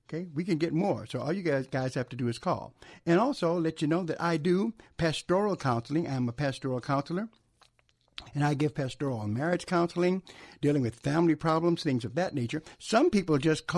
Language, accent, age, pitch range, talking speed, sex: English, American, 60-79, 125-175 Hz, 200 wpm, male